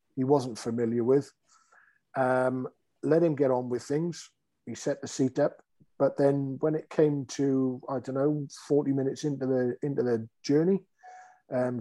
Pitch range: 115-140 Hz